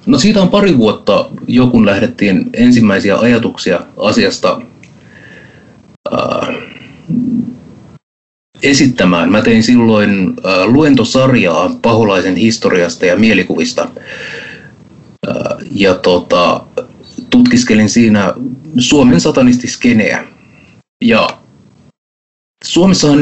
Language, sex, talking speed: Finnish, male, 65 wpm